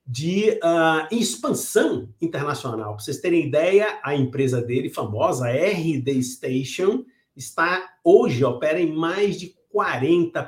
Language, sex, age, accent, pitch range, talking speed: Portuguese, male, 50-69, Brazilian, 130-190 Hz, 125 wpm